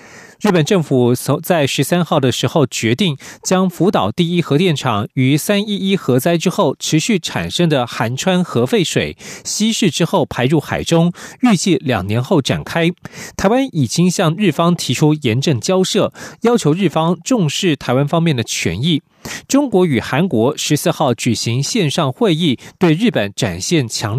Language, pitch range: Chinese, 130-185 Hz